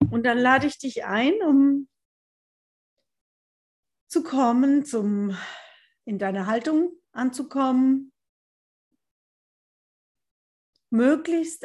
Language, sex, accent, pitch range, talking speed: English, female, German, 195-265 Hz, 70 wpm